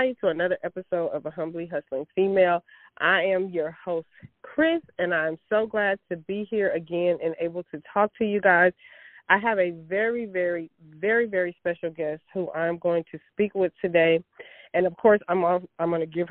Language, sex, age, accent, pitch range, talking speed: English, female, 30-49, American, 165-195 Hz, 200 wpm